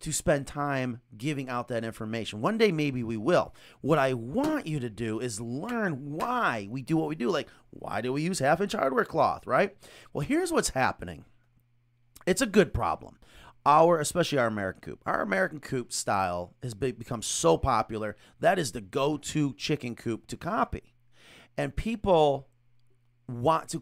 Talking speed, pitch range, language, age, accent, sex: 175 wpm, 115-165 Hz, English, 40-59, American, male